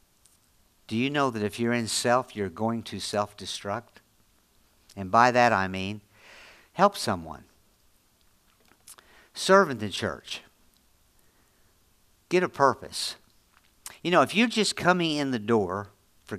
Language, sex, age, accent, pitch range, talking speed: English, male, 50-69, American, 95-125 Hz, 130 wpm